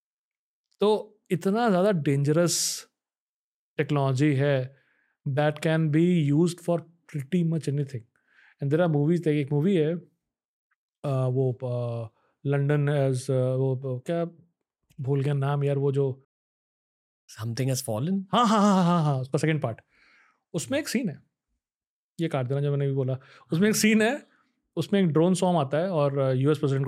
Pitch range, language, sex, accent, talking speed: 135-170 Hz, Hindi, male, native, 135 wpm